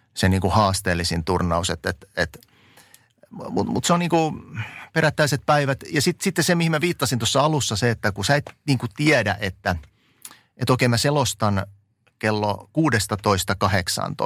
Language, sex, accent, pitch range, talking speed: Finnish, male, native, 105-140 Hz, 155 wpm